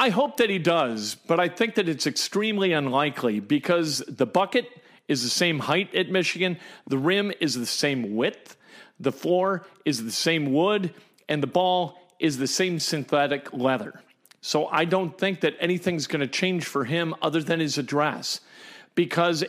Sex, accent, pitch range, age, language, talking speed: male, American, 150-190 Hz, 40-59, English, 175 wpm